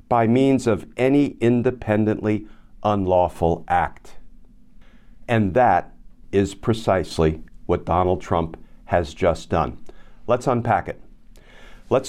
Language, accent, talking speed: English, American, 105 wpm